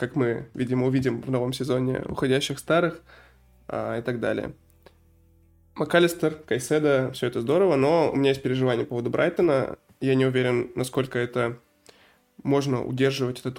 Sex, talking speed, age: male, 145 wpm, 20-39